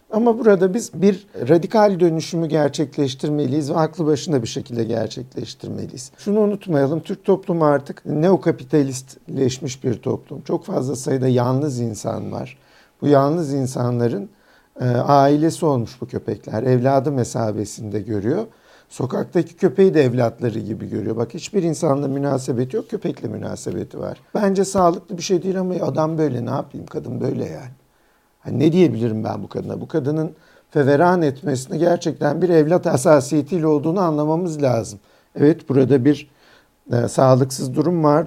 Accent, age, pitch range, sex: native, 50-69, 125-170 Hz, male